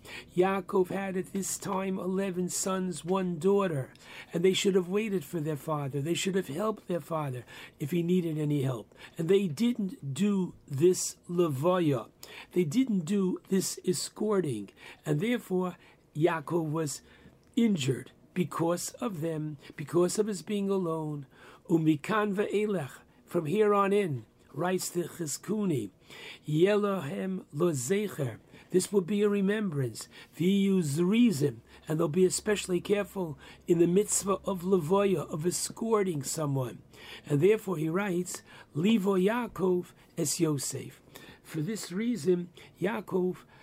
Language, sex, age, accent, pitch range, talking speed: English, male, 60-79, American, 155-195 Hz, 135 wpm